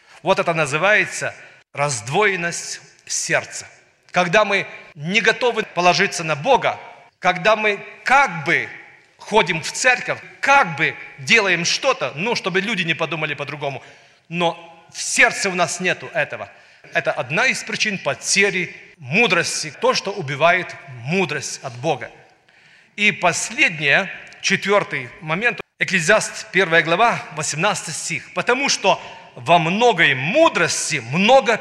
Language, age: Russian, 40-59